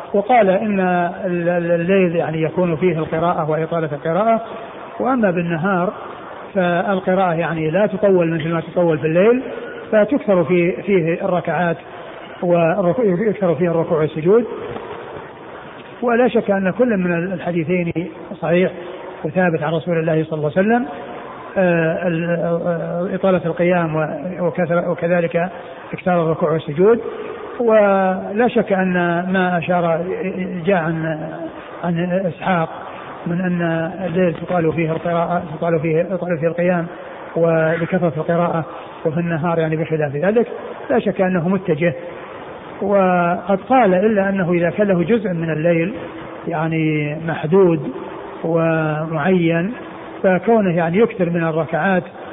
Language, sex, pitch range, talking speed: Arabic, male, 165-190 Hz, 110 wpm